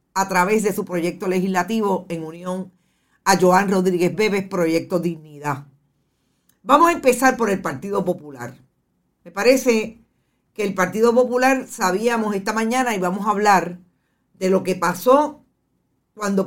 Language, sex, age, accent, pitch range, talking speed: Spanish, female, 50-69, American, 175-215 Hz, 140 wpm